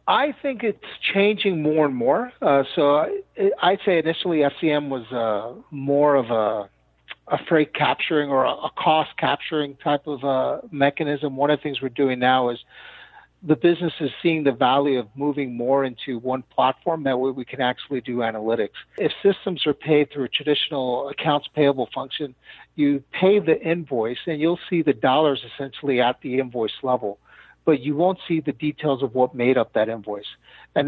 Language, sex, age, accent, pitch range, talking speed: English, male, 50-69, American, 125-150 Hz, 185 wpm